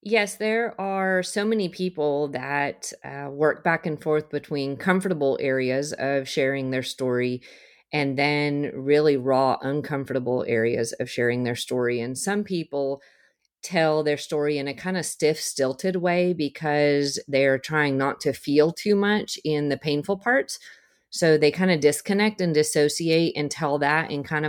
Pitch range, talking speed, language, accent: 140-170 Hz, 160 wpm, English, American